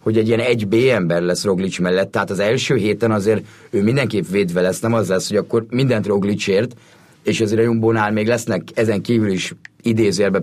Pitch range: 100-120 Hz